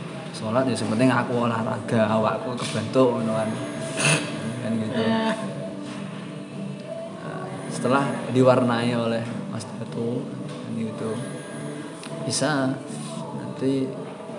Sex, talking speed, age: male, 70 wpm, 20-39